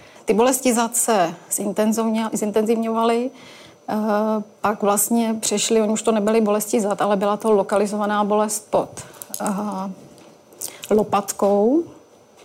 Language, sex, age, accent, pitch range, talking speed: Czech, female, 30-49, native, 205-220 Hz, 100 wpm